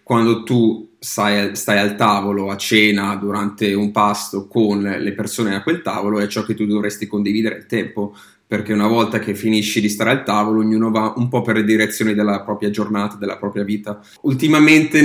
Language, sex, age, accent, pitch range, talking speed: Italian, male, 30-49, native, 105-115 Hz, 190 wpm